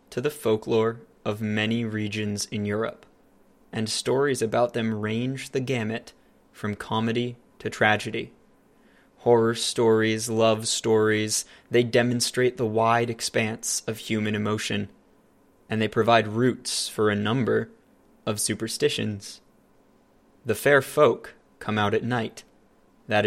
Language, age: English, 20-39